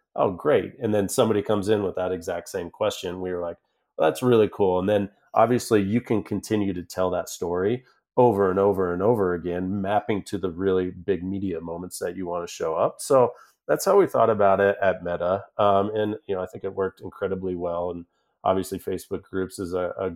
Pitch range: 90-105 Hz